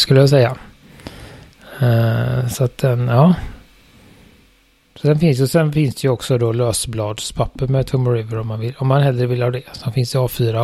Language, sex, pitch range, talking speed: Swedish, male, 115-150 Hz, 185 wpm